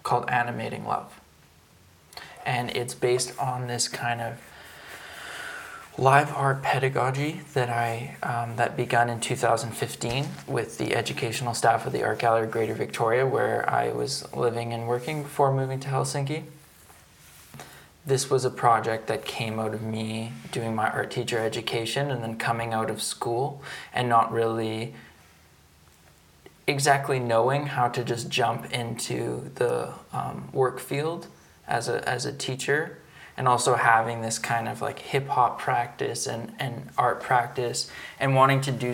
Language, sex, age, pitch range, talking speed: Finnish, male, 20-39, 115-130 Hz, 150 wpm